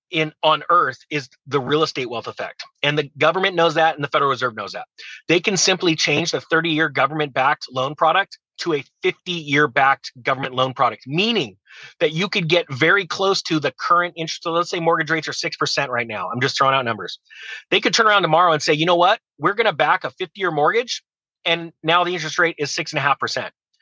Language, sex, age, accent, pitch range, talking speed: English, male, 30-49, American, 150-190 Hz, 235 wpm